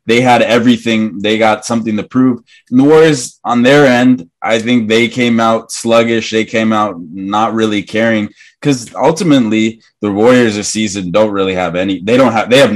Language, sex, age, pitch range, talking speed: English, male, 20-39, 100-115 Hz, 195 wpm